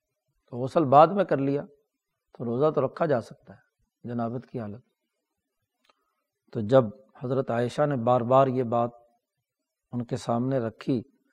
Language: Urdu